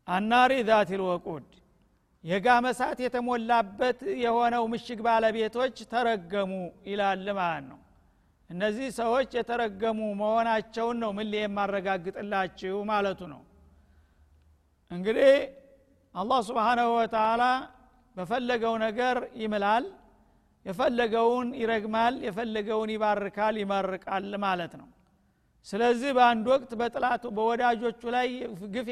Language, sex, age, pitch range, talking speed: Amharic, male, 50-69, 210-245 Hz, 85 wpm